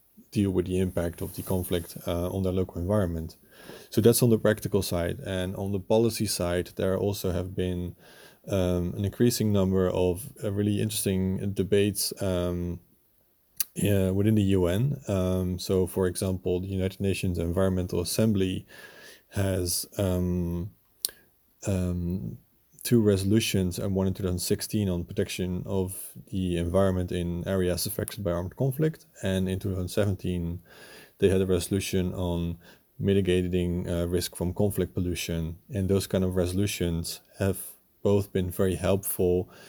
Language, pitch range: English, 90-100 Hz